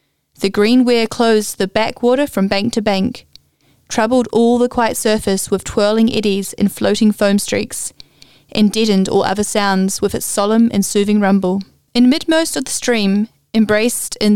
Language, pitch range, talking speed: English, 205-230 Hz, 165 wpm